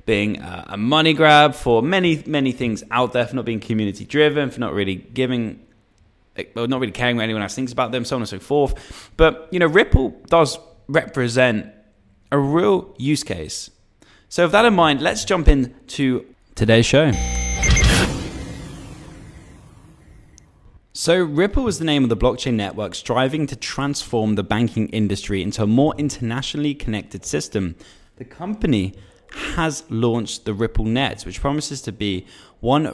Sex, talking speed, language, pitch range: male, 160 wpm, English, 105-140 Hz